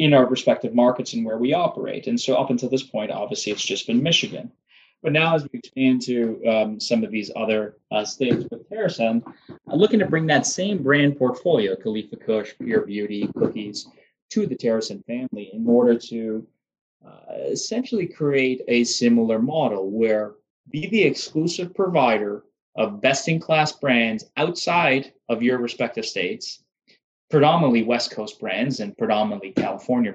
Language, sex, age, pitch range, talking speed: English, male, 20-39, 110-145 Hz, 160 wpm